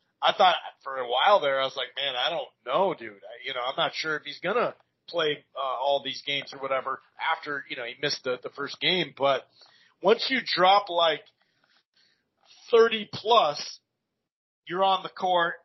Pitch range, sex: 145-190 Hz, male